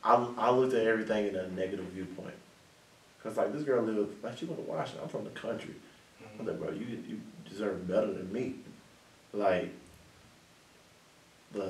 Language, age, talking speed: English, 20-39, 175 wpm